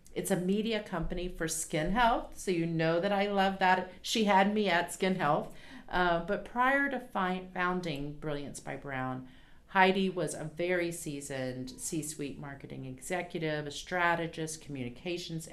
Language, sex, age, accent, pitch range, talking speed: English, female, 50-69, American, 150-185 Hz, 155 wpm